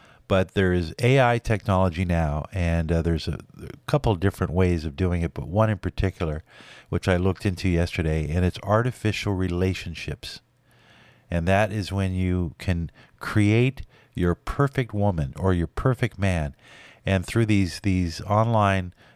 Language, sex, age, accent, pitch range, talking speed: English, male, 50-69, American, 90-115 Hz, 155 wpm